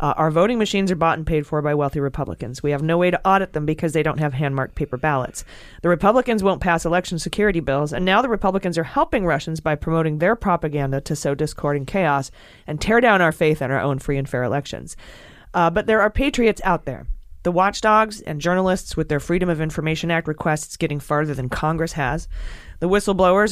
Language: English